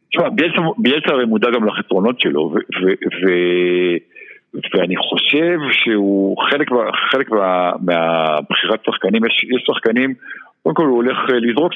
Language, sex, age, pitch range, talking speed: Hebrew, male, 50-69, 90-115 Hz, 130 wpm